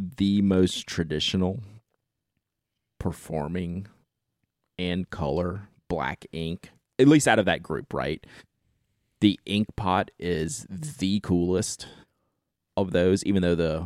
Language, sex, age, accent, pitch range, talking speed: English, male, 30-49, American, 80-100 Hz, 115 wpm